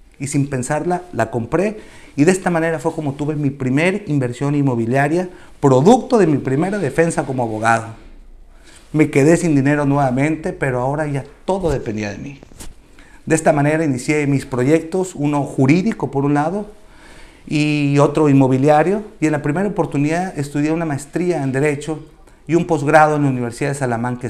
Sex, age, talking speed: male, 40-59, 165 wpm